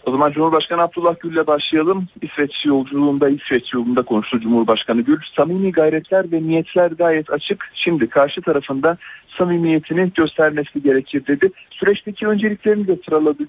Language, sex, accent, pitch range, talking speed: Turkish, male, native, 140-175 Hz, 135 wpm